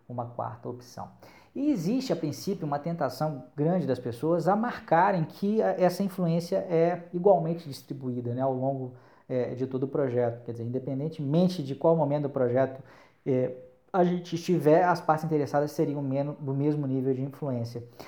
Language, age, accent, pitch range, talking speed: Portuguese, 20-39, Brazilian, 130-180 Hz, 155 wpm